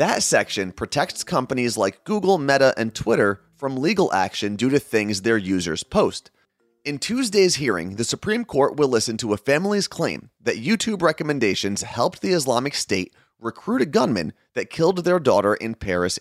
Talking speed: 170 wpm